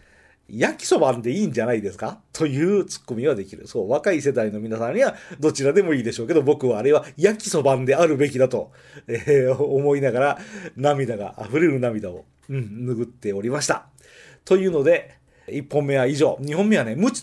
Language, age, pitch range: Japanese, 40-59, 120-195 Hz